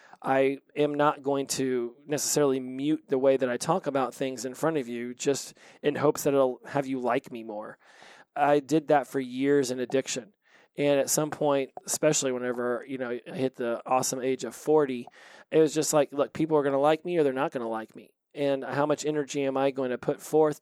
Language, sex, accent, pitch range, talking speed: English, male, American, 130-155 Hz, 225 wpm